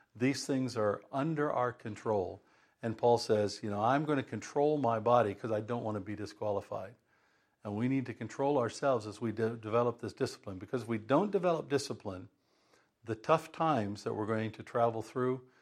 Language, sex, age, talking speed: English, male, 50-69, 195 wpm